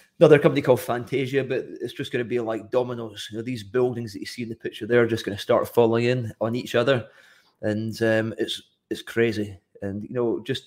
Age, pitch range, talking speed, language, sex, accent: 30-49, 110-125 Hz, 230 wpm, English, male, British